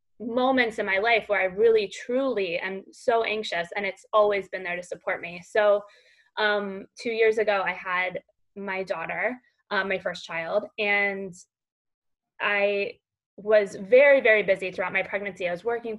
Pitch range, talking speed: 190-225 Hz, 165 wpm